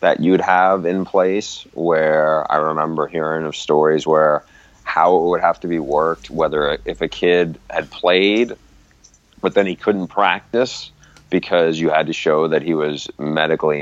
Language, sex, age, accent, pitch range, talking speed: English, male, 30-49, American, 75-90 Hz, 170 wpm